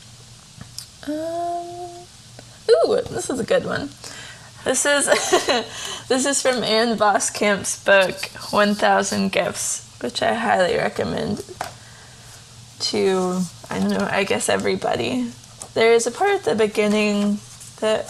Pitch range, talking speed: 140-220 Hz, 120 wpm